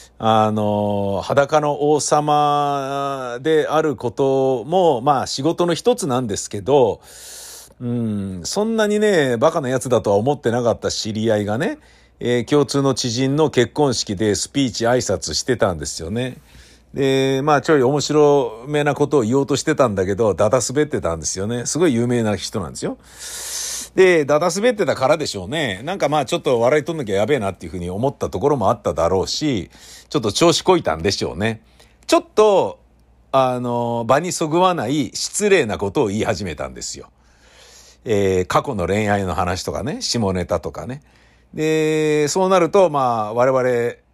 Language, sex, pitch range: Japanese, male, 100-155 Hz